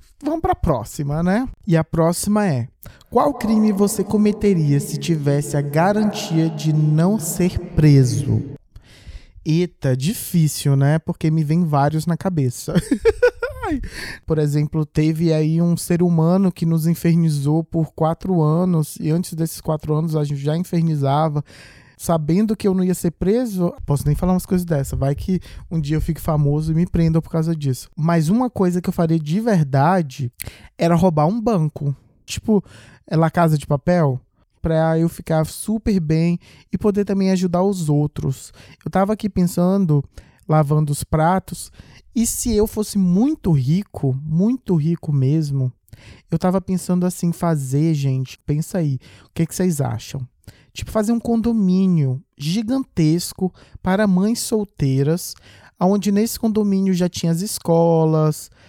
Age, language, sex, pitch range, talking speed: 20-39, Portuguese, male, 150-190 Hz, 155 wpm